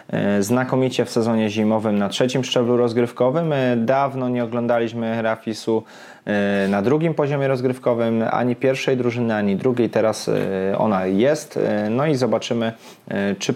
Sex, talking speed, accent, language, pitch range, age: male, 125 wpm, native, Polish, 105-125 Hz, 20-39